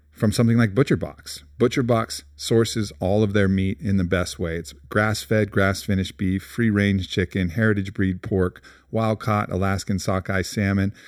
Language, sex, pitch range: English, male, 95-115 Hz